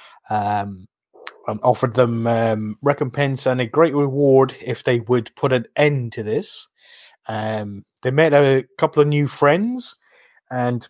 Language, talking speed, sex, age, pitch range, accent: English, 145 wpm, male, 30-49, 115-135 Hz, British